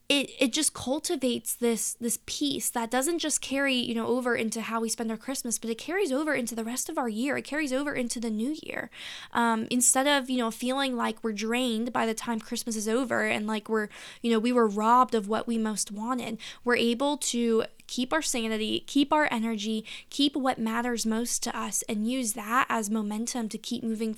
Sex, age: female, 10-29